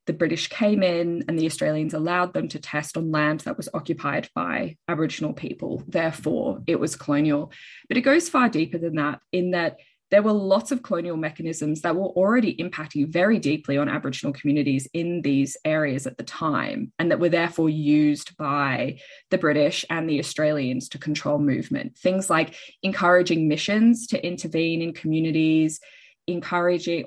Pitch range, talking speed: 150-180 Hz, 170 wpm